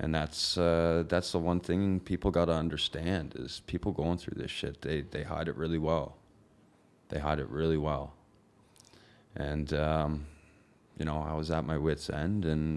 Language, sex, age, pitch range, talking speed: English, male, 20-39, 75-85 Hz, 185 wpm